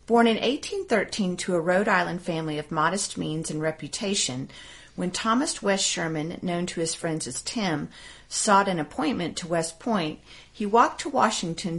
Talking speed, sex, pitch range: 170 wpm, female, 155-195 Hz